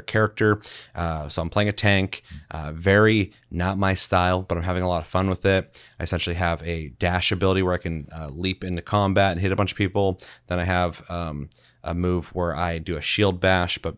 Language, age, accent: English, 30-49, American